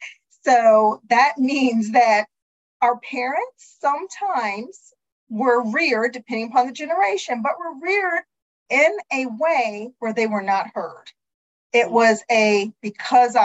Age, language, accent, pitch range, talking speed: 40-59, English, American, 215-285 Hz, 125 wpm